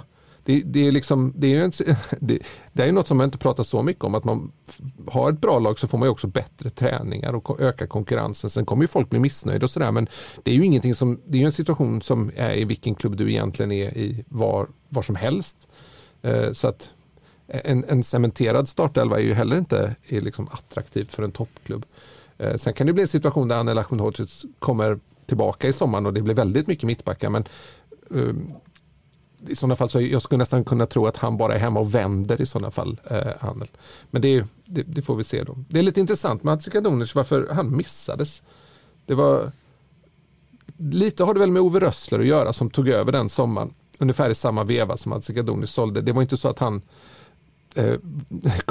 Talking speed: 215 wpm